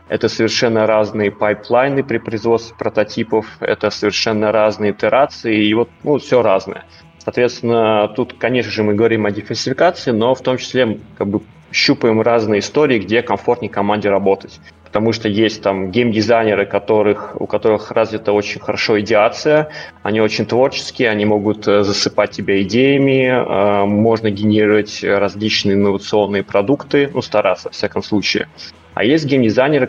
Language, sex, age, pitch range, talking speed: Russian, male, 20-39, 100-120 Hz, 145 wpm